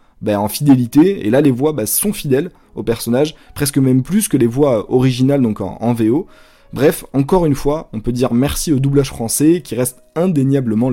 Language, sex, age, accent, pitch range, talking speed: French, male, 20-39, French, 120-150 Hz, 205 wpm